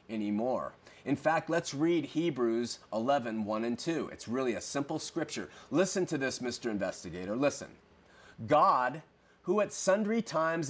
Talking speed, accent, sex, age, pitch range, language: 140 wpm, American, male, 30-49, 140-195 Hz, English